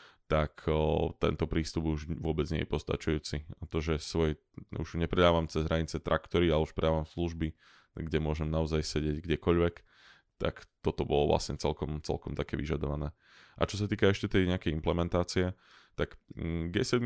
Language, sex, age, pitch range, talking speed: Slovak, male, 20-39, 80-85 Hz, 160 wpm